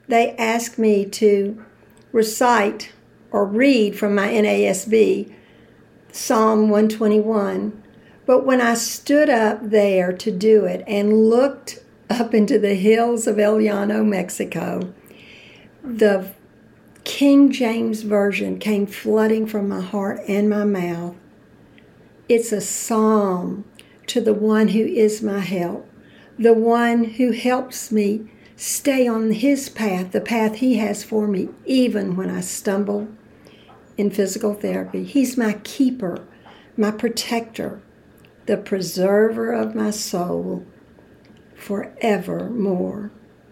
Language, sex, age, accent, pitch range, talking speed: English, female, 60-79, American, 205-230 Hz, 115 wpm